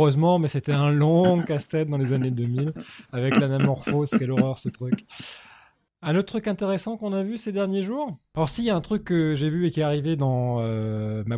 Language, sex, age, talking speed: French, male, 20-39, 220 wpm